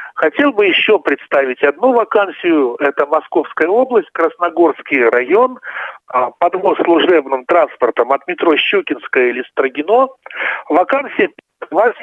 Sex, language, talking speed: male, Russian, 100 wpm